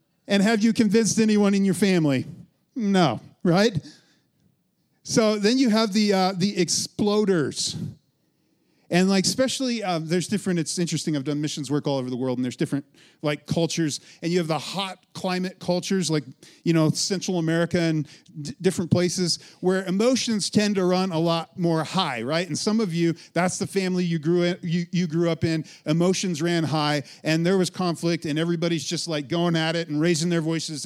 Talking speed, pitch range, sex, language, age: 190 wpm, 155-195 Hz, male, English, 40-59